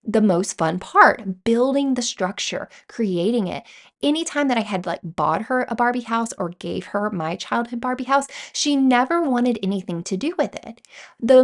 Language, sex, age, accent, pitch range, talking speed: English, female, 20-39, American, 195-260 Hz, 185 wpm